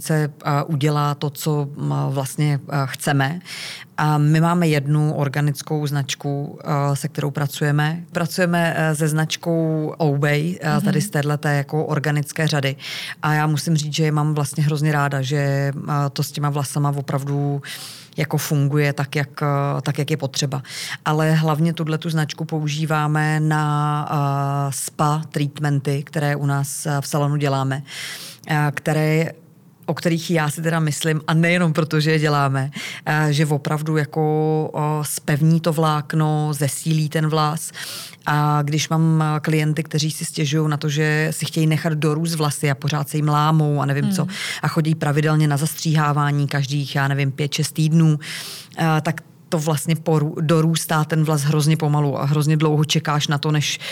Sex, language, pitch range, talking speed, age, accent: female, Czech, 145-160 Hz, 150 wpm, 30-49, native